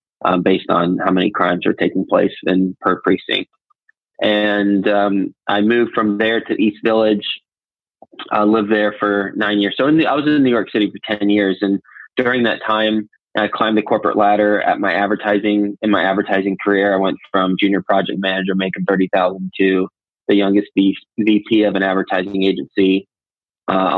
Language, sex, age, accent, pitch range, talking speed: English, male, 20-39, American, 95-110 Hz, 185 wpm